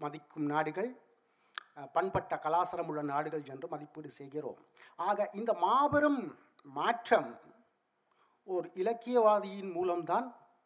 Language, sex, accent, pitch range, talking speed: Tamil, male, native, 185-260 Hz, 85 wpm